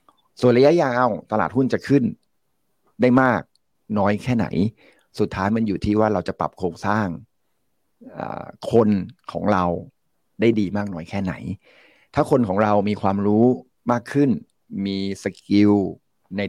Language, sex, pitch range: Thai, male, 95-120 Hz